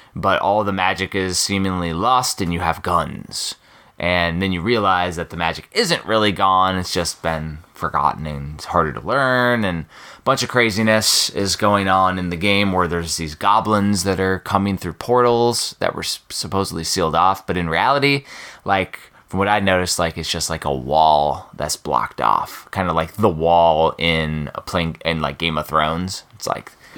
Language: English